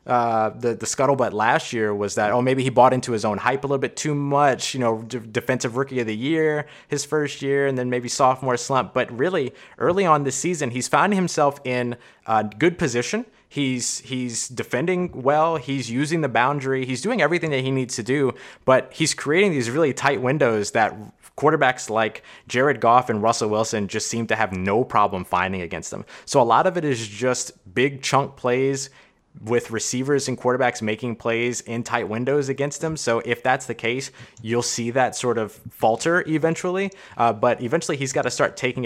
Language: English